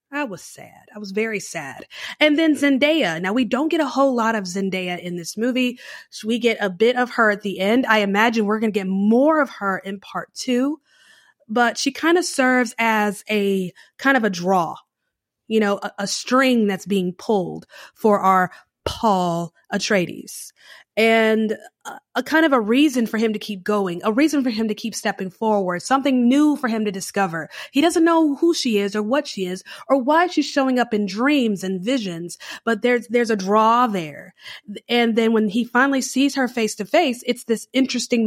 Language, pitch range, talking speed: English, 200-255 Hz, 200 wpm